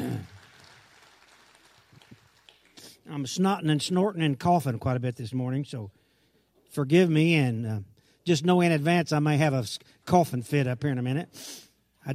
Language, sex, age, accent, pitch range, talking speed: English, male, 50-69, American, 135-170 Hz, 160 wpm